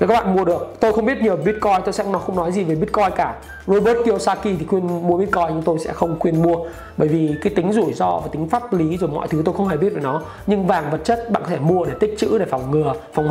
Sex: male